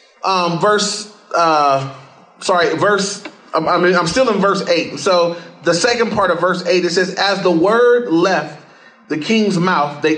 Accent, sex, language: American, male, English